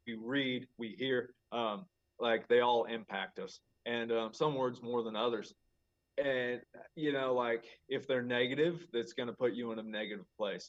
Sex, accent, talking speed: male, American, 185 wpm